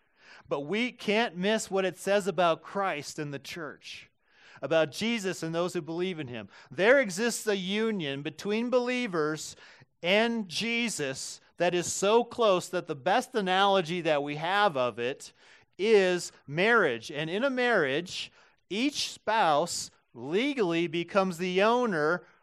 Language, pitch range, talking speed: English, 140-205 Hz, 140 wpm